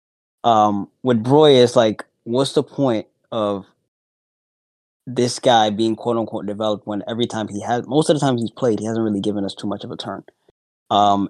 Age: 20-39